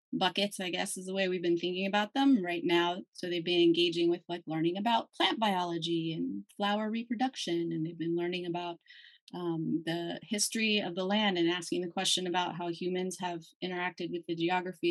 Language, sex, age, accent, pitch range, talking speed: English, female, 30-49, American, 170-205 Hz, 195 wpm